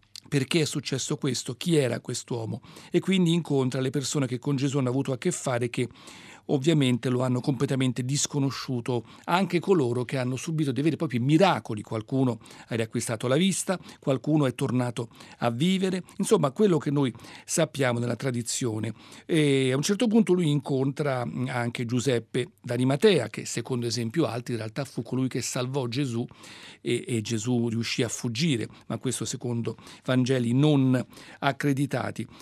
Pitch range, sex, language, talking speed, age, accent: 125-160 Hz, male, Italian, 160 wpm, 40-59, native